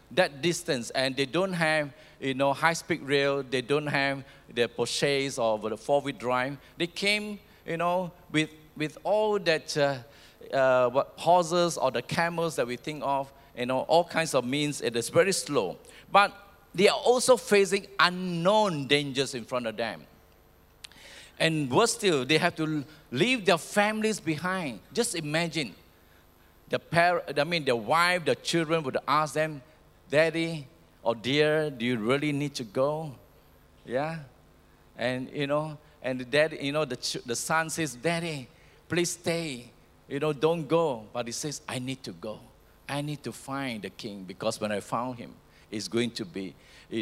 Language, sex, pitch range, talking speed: English, male, 125-165 Hz, 170 wpm